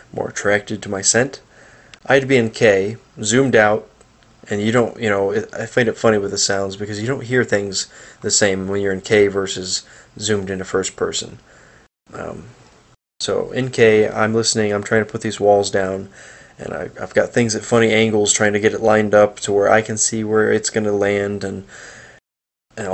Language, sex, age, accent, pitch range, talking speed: English, male, 20-39, American, 105-125 Hz, 205 wpm